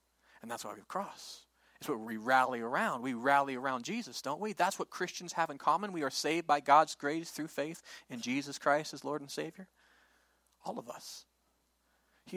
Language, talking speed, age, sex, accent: English, 200 wpm, 40-59, male, American